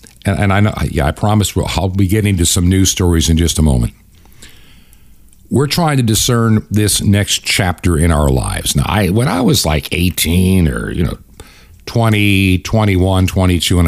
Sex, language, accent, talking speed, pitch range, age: male, English, American, 180 wpm, 85-105 Hz, 50-69